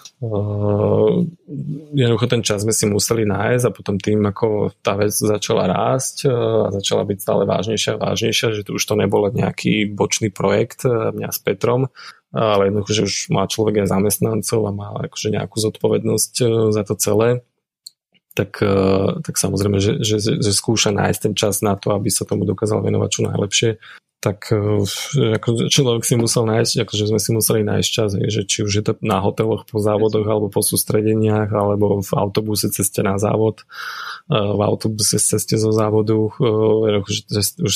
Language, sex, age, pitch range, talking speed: Slovak, male, 20-39, 105-115 Hz, 180 wpm